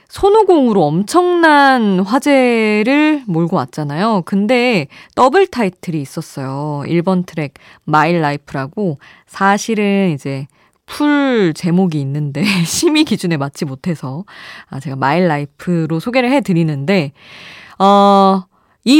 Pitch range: 155-215 Hz